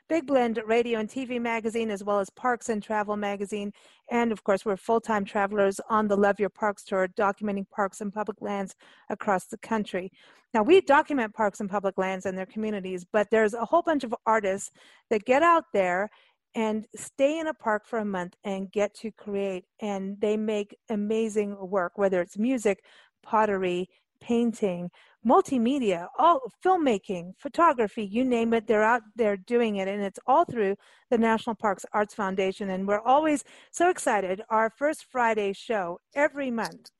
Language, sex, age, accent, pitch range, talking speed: English, female, 40-59, American, 200-240 Hz, 175 wpm